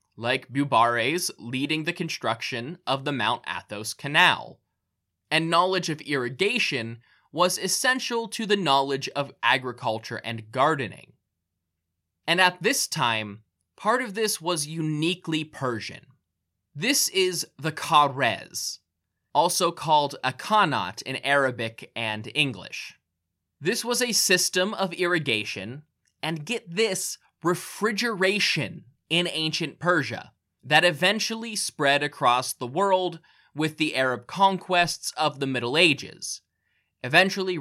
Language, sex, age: English, male, 20-39